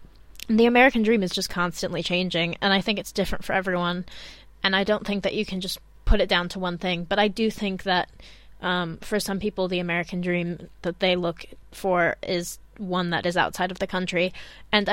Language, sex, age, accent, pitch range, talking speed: English, female, 20-39, American, 180-210 Hz, 215 wpm